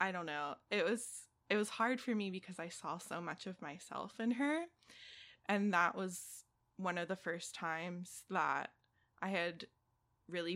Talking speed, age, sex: 175 wpm, 20-39, female